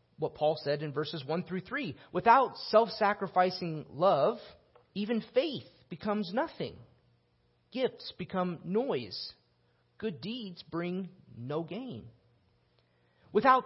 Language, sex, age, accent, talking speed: English, male, 30-49, American, 105 wpm